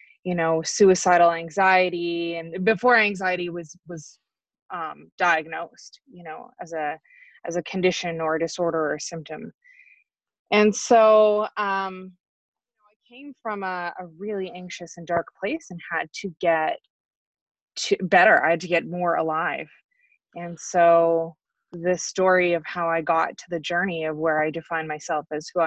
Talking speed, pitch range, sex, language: 155 wpm, 170-210 Hz, female, English